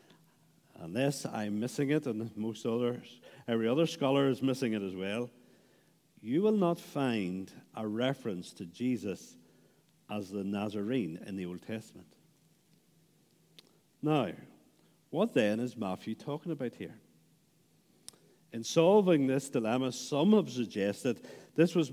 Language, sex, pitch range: English, male, 105-140 Hz